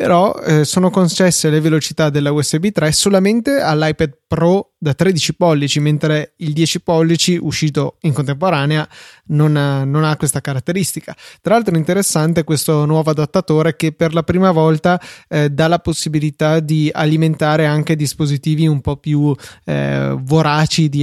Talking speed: 155 wpm